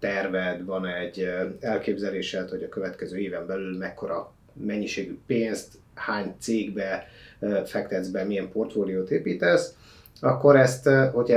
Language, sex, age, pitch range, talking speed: Hungarian, male, 30-49, 95-120 Hz, 115 wpm